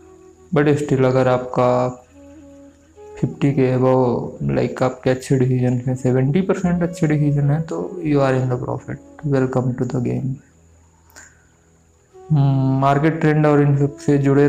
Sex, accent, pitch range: male, native, 130-150 Hz